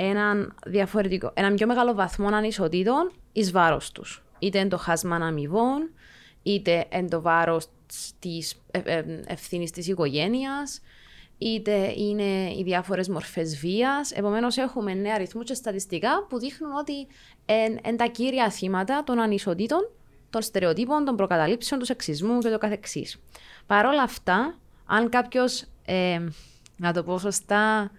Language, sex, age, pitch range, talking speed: Greek, female, 20-39, 175-235 Hz, 140 wpm